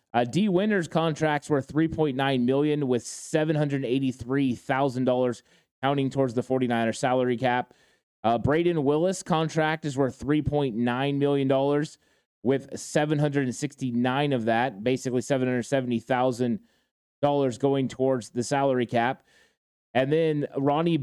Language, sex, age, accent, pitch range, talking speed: English, male, 30-49, American, 125-145 Hz, 110 wpm